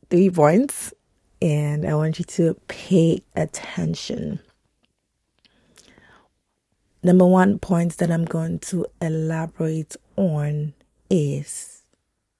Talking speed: 90 wpm